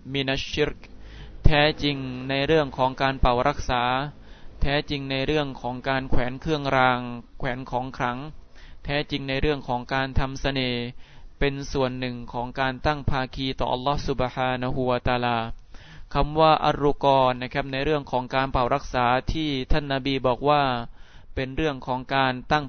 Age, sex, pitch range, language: 20-39, male, 120-140 Hz, Thai